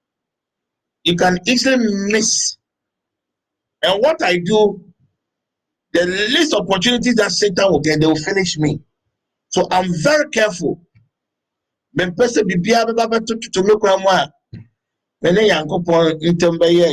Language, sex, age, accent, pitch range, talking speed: English, male, 50-69, Nigerian, 155-215 Hz, 100 wpm